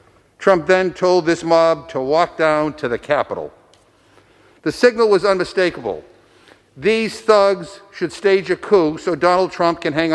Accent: American